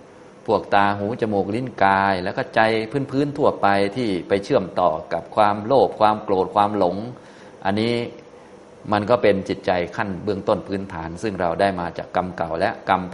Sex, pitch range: male, 85-105 Hz